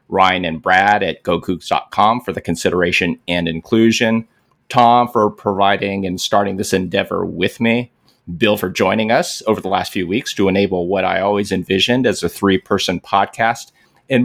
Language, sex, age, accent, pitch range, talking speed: English, male, 30-49, American, 95-115 Hz, 165 wpm